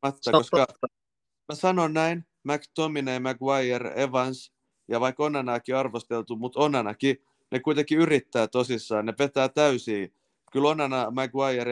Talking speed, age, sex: 125 wpm, 30-49, male